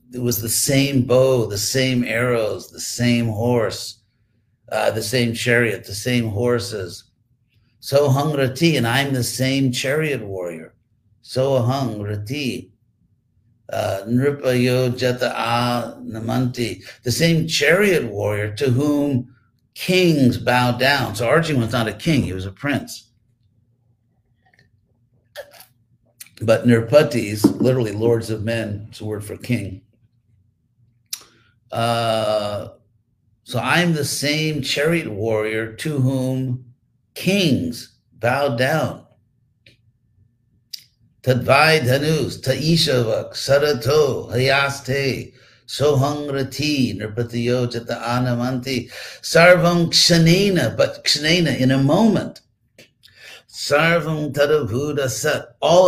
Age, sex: 50-69, male